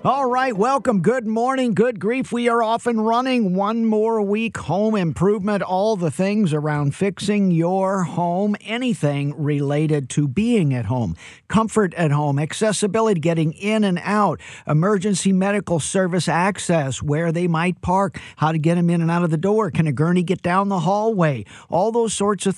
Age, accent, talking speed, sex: 50-69, American, 180 wpm, male